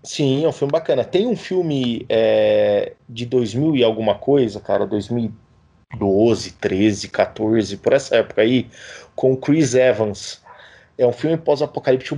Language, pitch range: Portuguese, 125-160 Hz